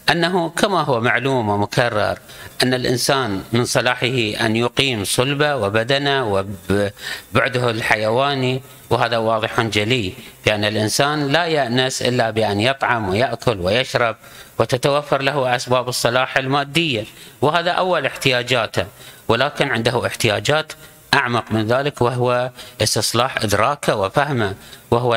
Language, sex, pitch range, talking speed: Arabic, male, 115-140 Hz, 110 wpm